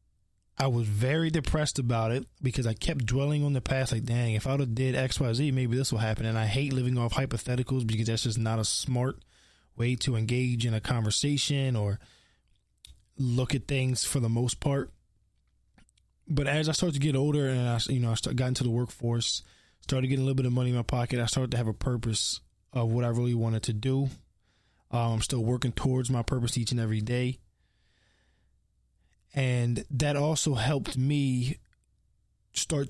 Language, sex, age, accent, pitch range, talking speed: English, male, 20-39, American, 110-135 Hz, 195 wpm